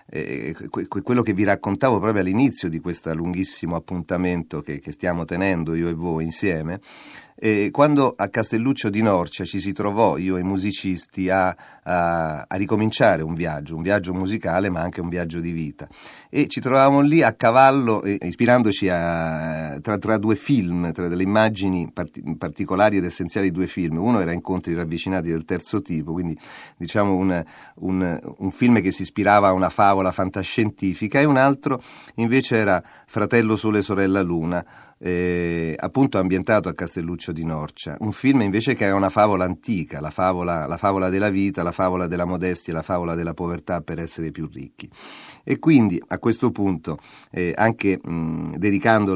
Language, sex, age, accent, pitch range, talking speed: Italian, male, 40-59, native, 85-105 Hz, 165 wpm